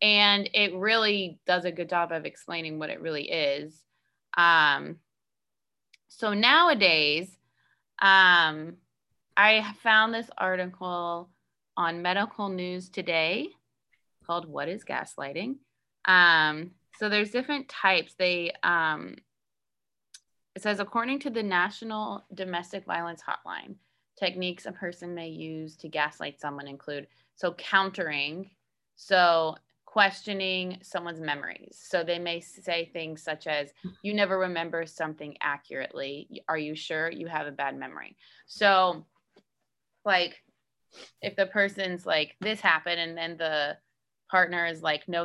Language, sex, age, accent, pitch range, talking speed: English, female, 20-39, American, 160-195 Hz, 125 wpm